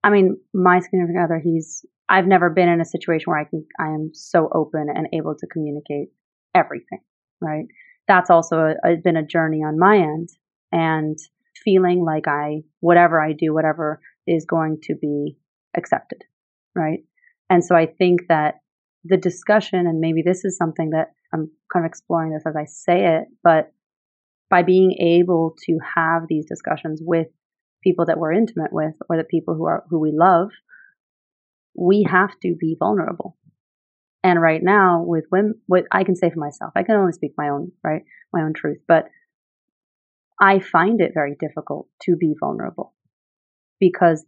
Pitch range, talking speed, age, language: 155-185 Hz, 175 wpm, 30-49, English